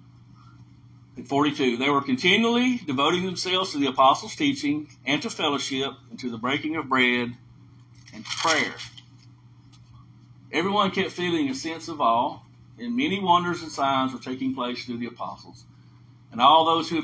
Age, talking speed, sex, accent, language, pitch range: 50-69, 150 wpm, male, American, English, 120-150 Hz